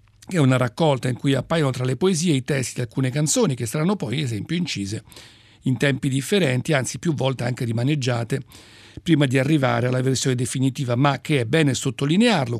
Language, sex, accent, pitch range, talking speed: Italian, male, native, 125-160 Hz, 180 wpm